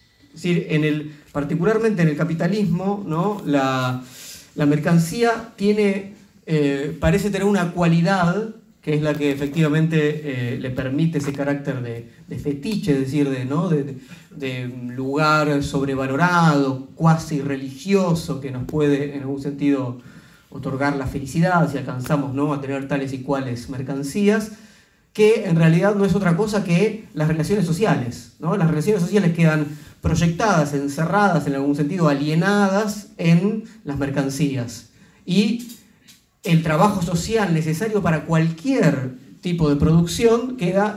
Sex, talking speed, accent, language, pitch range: male, 130 wpm, Argentinian, Spanish, 140-195 Hz